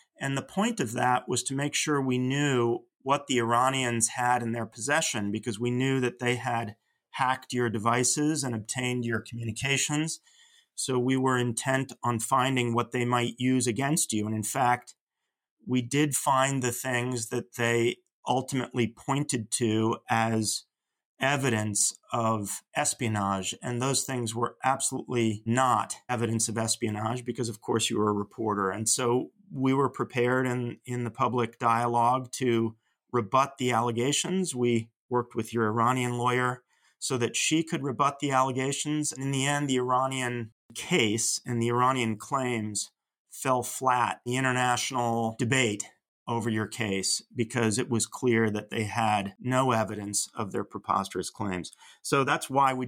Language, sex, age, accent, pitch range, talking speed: English, male, 30-49, American, 115-130 Hz, 160 wpm